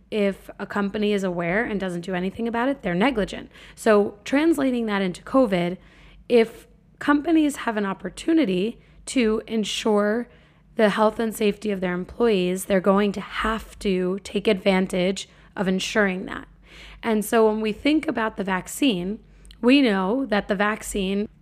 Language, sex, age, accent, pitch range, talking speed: English, female, 20-39, American, 190-230 Hz, 155 wpm